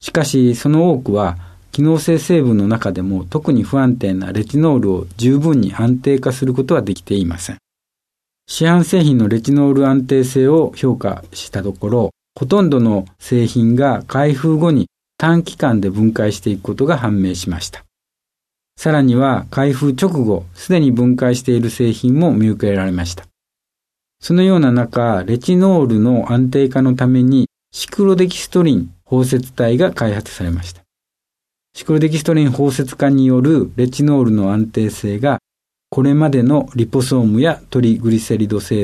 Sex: male